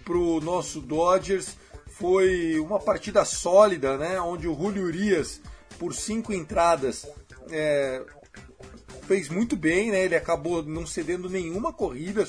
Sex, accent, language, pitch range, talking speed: male, Brazilian, Portuguese, 170-205 Hz, 125 wpm